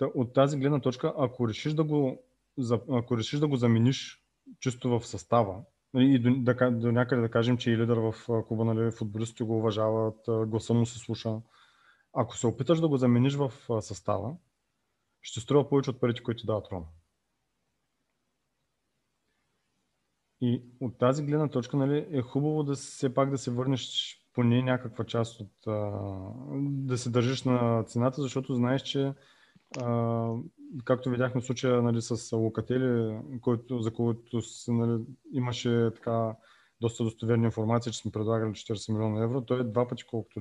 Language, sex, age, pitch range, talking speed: Bulgarian, male, 30-49, 115-130 Hz, 160 wpm